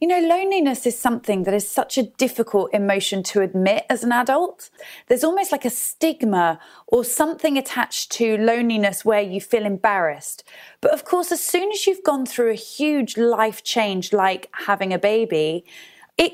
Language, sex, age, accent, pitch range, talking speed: English, female, 30-49, British, 205-260 Hz, 175 wpm